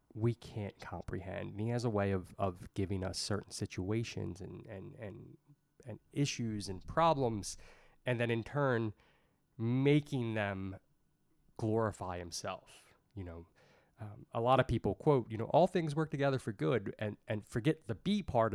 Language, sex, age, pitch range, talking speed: English, male, 20-39, 90-115 Hz, 165 wpm